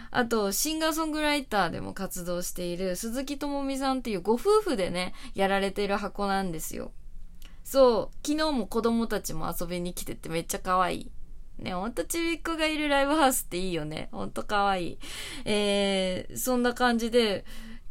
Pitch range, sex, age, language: 180-270 Hz, female, 20-39, Japanese